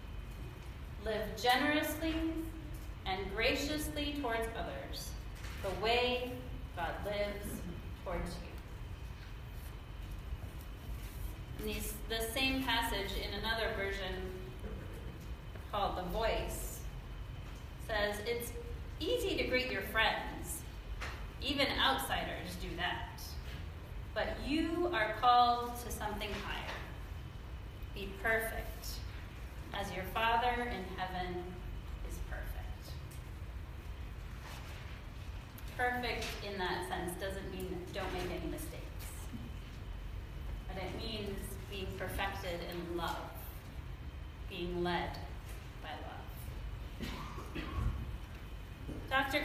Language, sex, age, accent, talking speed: English, female, 30-49, American, 85 wpm